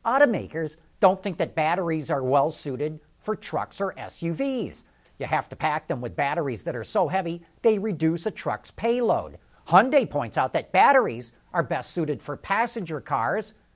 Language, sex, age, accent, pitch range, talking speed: English, male, 50-69, American, 160-235 Hz, 165 wpm